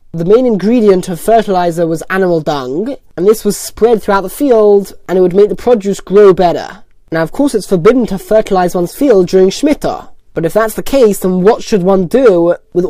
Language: English